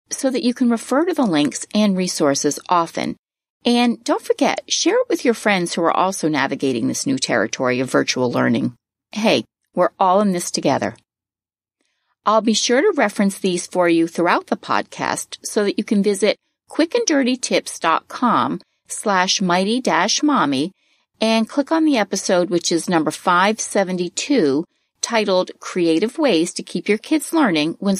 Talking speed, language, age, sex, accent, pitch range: 155 wpm, English, 40-59, female, American, 170-275 Hz